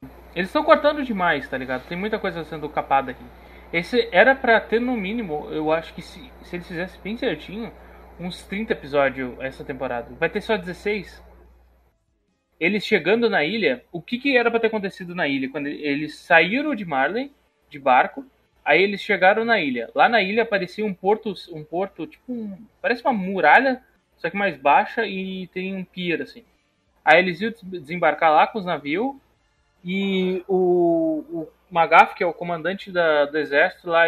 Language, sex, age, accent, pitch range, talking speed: Portuguese, male, 20-39, Brazilian, 155-205 Hz, 180 wpm